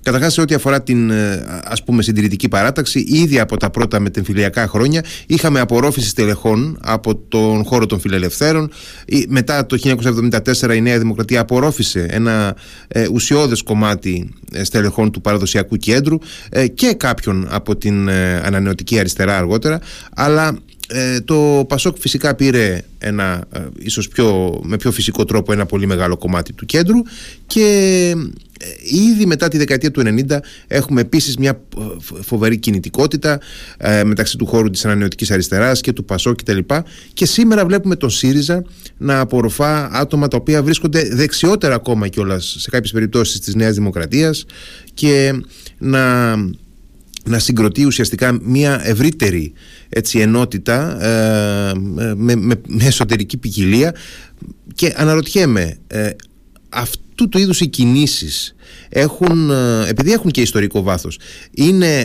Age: 30-49